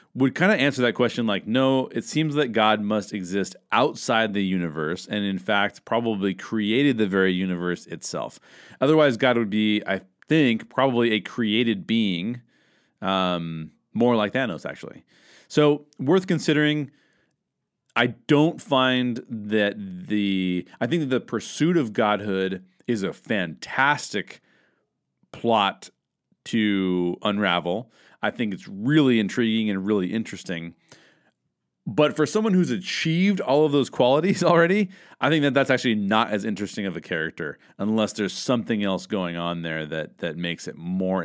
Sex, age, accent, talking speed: male, 40-59, American, 145 wpm